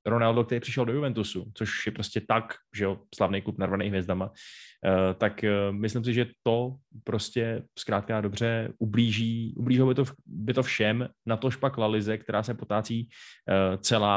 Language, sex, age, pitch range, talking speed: Czech, male, 20-39, 105-120 Hz, 155 wpm